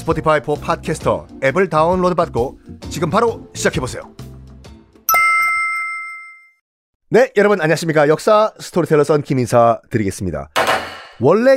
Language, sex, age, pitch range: Korean, male, 40-59, 125-195 Hz